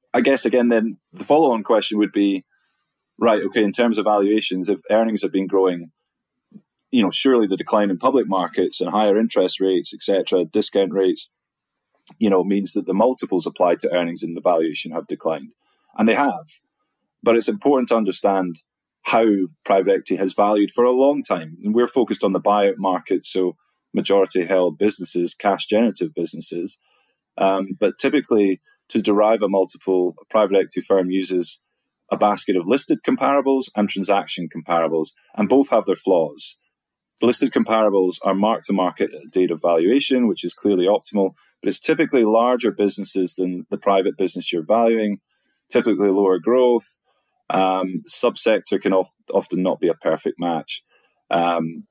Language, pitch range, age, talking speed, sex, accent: English, 95-115 Hz, 20-39, 165 wpm, male, British